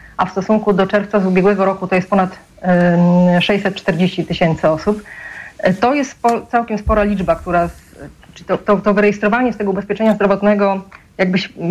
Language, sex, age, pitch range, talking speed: Polish, female, 30-49, 180-210 Hz, 150 wpm